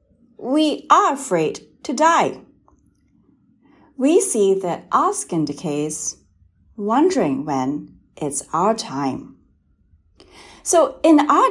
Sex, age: female, 40-59